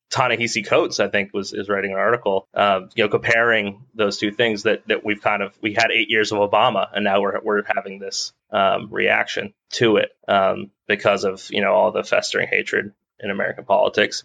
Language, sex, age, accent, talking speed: English, male, 20-39, American, 205 wpm